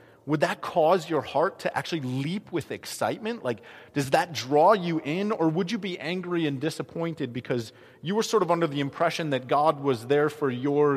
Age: 30-49